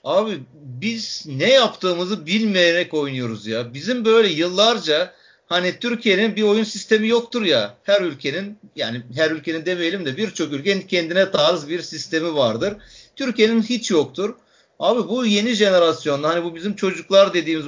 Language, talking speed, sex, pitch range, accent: Turkish, 145 wpm, male, 170-225 Hz, native